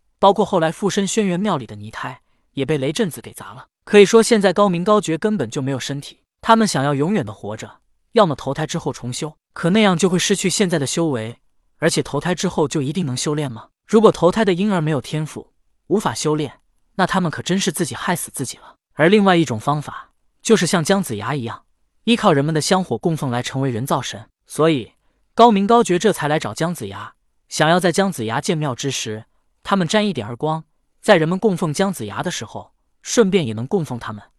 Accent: native